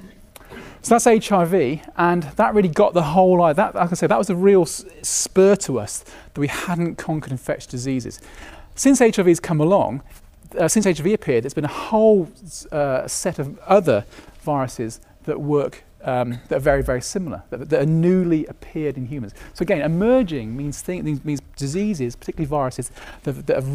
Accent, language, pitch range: British, English, 130-175 Hz